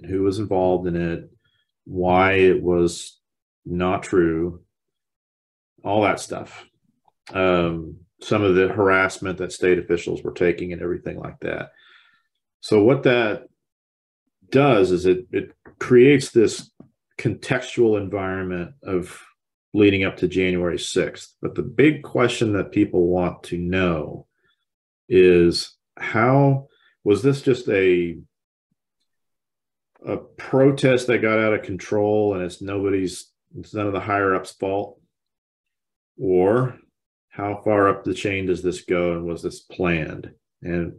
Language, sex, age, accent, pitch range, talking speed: English, male, 40-59, American, 90-105 Hz, 130 wpm